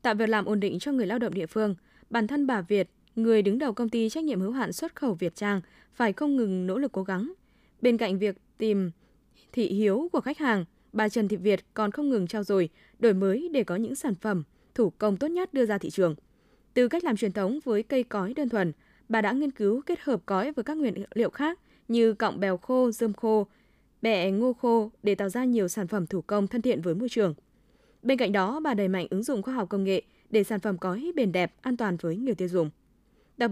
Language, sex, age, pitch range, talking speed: Vietnamese, female, 20-39, 195-250 Hz, 245 wpm